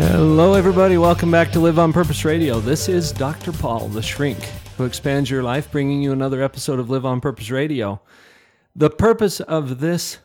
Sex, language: male, English